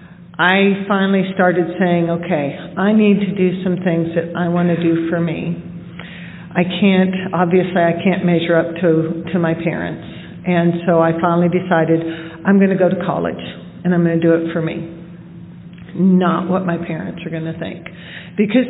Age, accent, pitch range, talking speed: 50-69, American, 170-190 Hz, 185 wpm